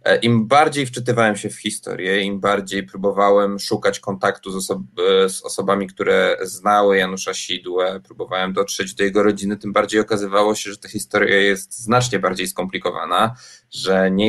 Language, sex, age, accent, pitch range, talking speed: Polish, male, 20-39, native, 100-125 Hz, 150 wpm